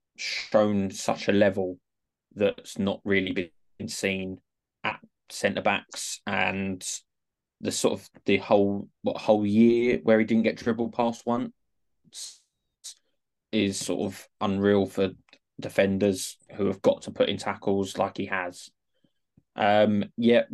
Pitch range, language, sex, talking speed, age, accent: 100-115 Hz, English, male, 130 wpm, 20-39, British